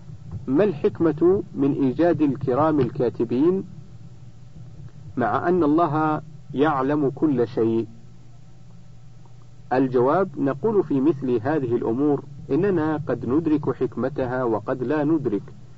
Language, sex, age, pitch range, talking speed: Arabic, male, 50-69, 120-150 Hz, 95 wpm